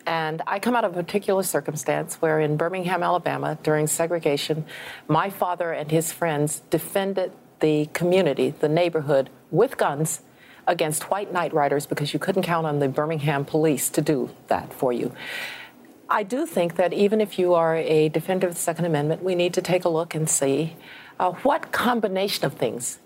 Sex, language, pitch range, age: female, English, 155-190 Hz, 50-69